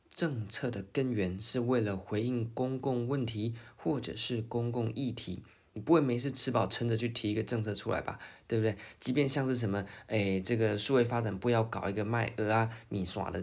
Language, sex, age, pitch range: Chinese, male, 20-39, 110-130 Hz